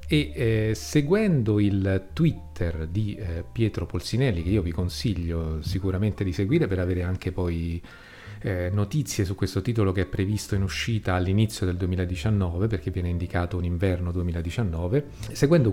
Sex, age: male, 40-59